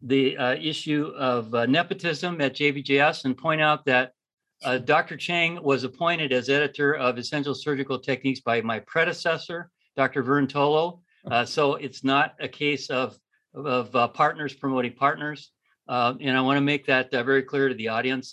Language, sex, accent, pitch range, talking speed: English, male, American, 125-150 Hz, 175 wpm